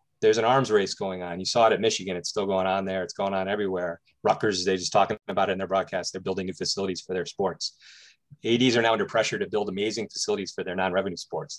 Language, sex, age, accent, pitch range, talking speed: English, male, 30-49, American, 95-130 Hz, 255 wpm